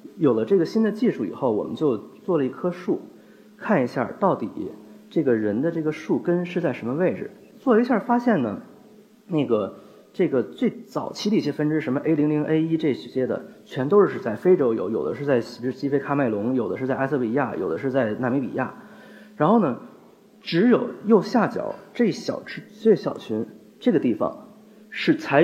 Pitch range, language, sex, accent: 135-210 Hz, Chinese, male, native